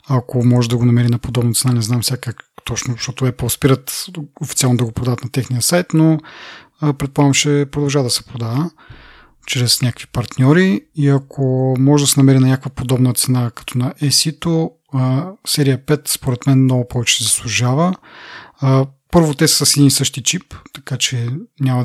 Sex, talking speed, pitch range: male, 175 wpm, 120-145 Hz